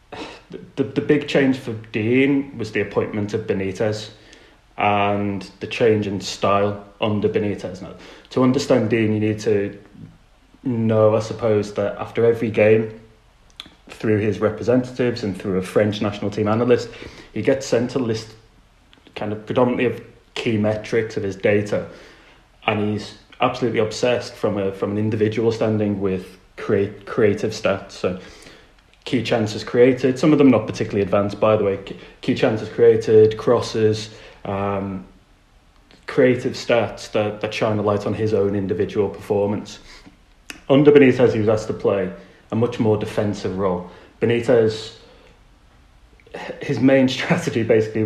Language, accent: English, British